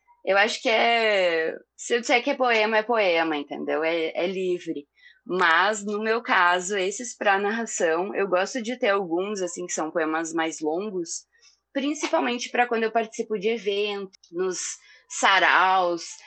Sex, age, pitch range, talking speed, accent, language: female, 20-39, 175-230 Hz, 160 wpm, Brazilian, Portuguese